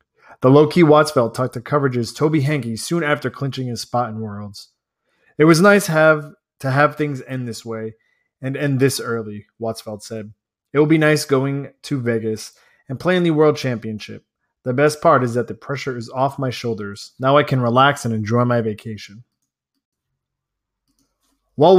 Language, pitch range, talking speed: English, 115-150 Hz, 175 wpm